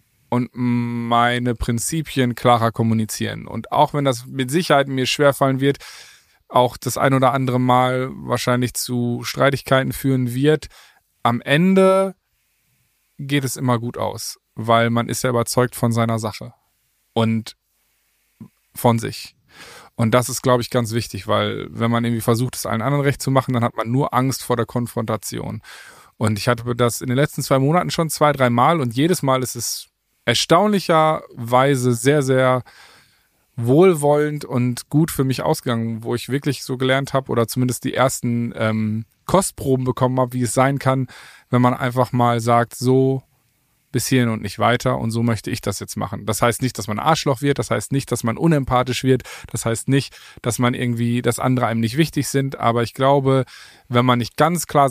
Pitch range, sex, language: 120-135 Hz, male, German